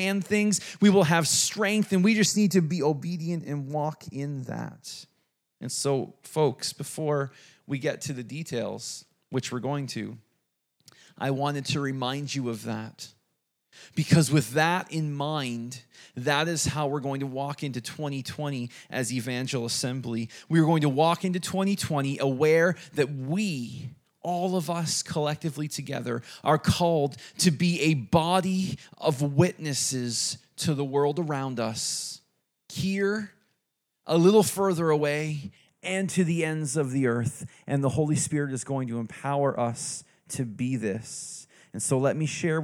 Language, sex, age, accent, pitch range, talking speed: English, male, 30-49, American, 130-165 Hz, 155 wpm